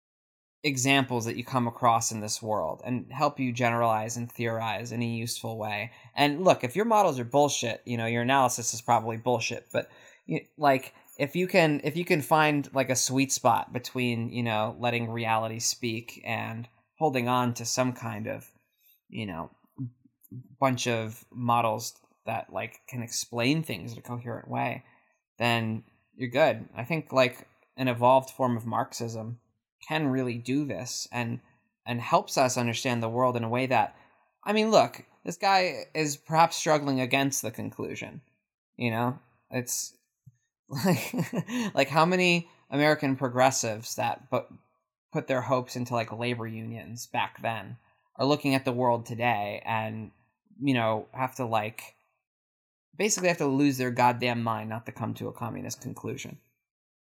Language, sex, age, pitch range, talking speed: English, male, 20-39, 115-135 Hz, 165 wpm